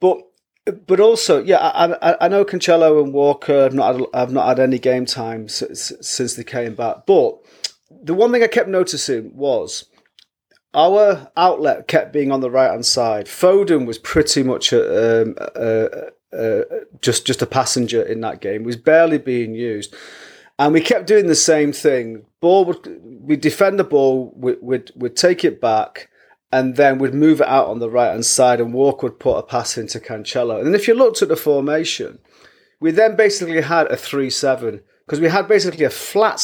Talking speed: 190 wpm